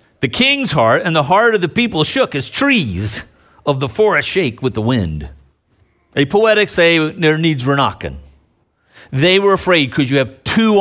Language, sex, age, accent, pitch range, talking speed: English, male, 50-69, American, 110-170 Hz, 185 wpm